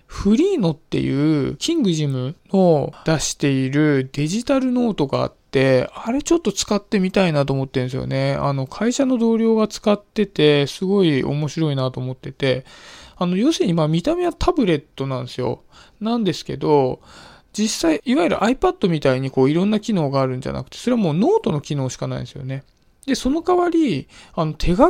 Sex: male